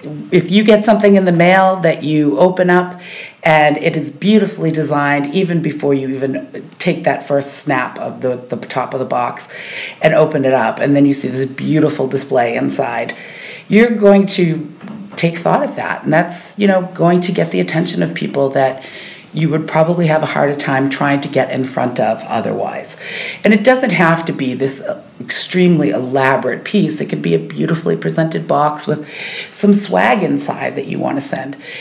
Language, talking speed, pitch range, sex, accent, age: English, 190 wpm, 140-180 Hz, female, American, 40-59